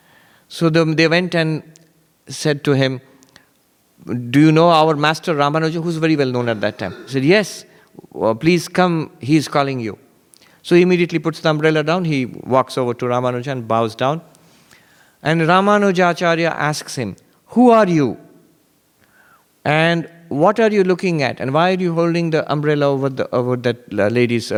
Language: English